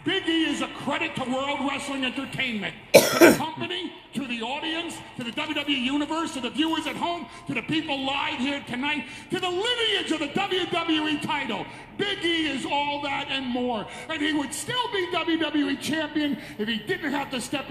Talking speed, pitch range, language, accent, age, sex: 195 wpm, 245-335 Hz, English, American, 40-59, male